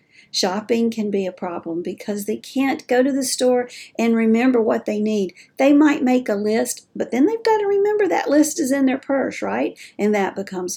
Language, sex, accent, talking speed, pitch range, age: English, female, American, 210 wpm, 195-255 Hz, 50-69